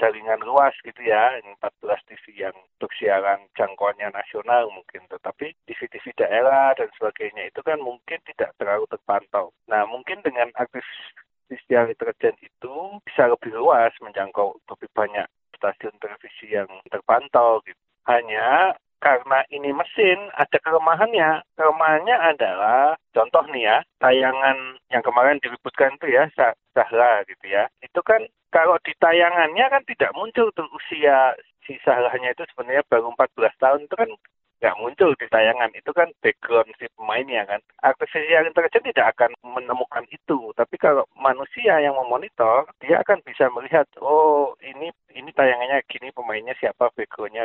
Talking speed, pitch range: 145 wpm, 130-210 Hz